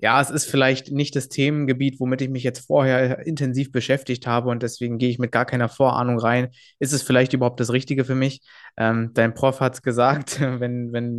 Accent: German